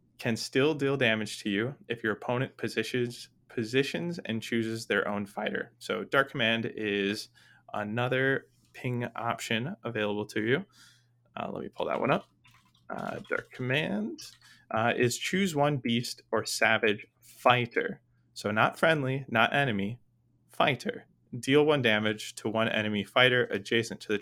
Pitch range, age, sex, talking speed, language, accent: 105-125 Hz, 20-39, male, 150 wpm, English, American